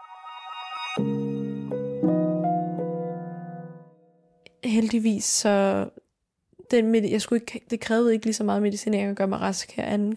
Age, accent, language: 20-39, native, Danish